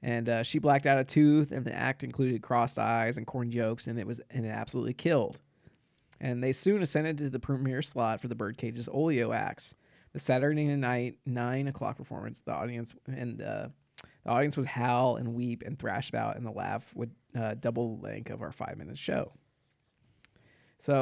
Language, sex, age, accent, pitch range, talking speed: English, male, 20-39, American, 115-140 Hz, 195 wpm